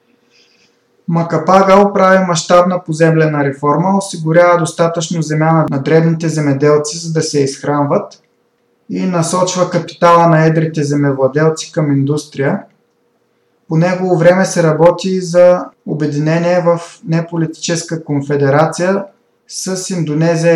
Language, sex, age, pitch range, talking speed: Bulgarian, male, 20-39, 150-180 Hz, 100 wpm